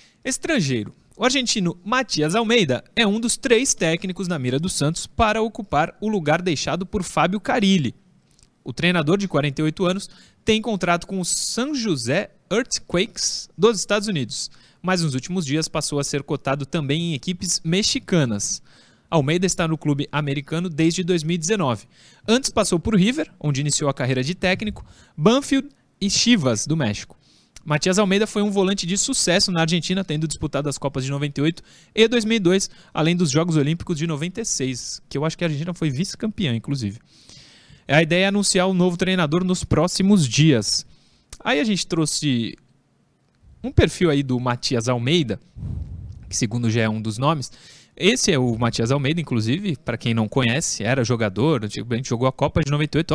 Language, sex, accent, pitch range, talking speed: Portuguese, male, Brazilian, 140-190 Hz, 170 wpm